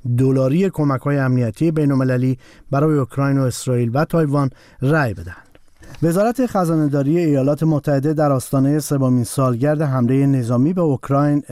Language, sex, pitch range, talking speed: Persian, male, 135-160 Hz, 125 wpm